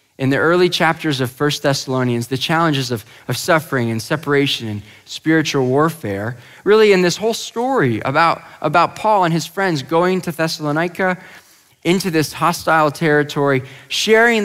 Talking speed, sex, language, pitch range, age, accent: 150 wpm, male, English, 120-165 Hz, 20-39, American